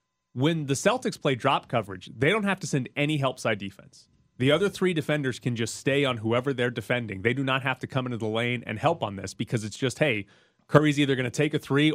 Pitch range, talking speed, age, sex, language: 115-155 Hz, 250 wpm, 30-49, male, English